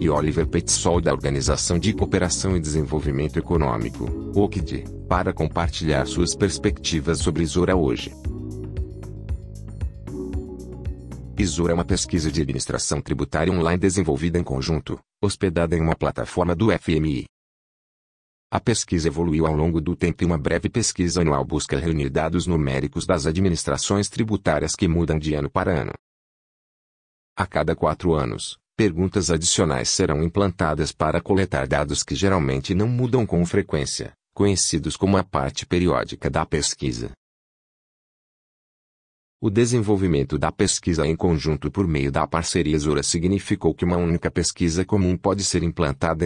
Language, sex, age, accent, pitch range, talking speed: English, male, 40-59, Brazilian, 75-95 Hz, 135 wpm